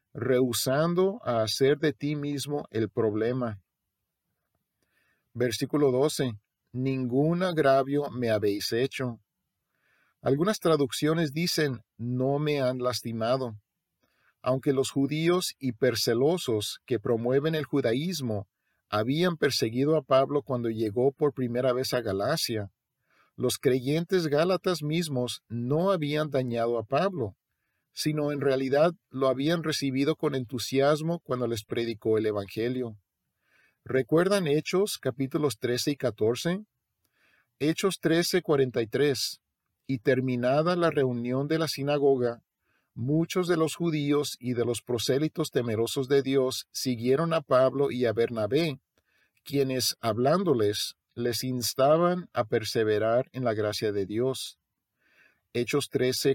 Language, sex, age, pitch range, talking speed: English, male, 50-69, 120-150 Hz, 115 wpm